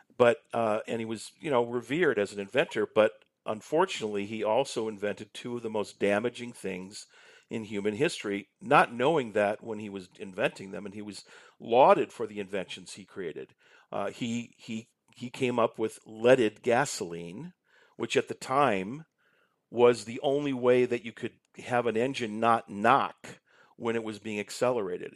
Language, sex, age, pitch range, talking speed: English, male, 50-69, 105-125 Hz, 170 wpm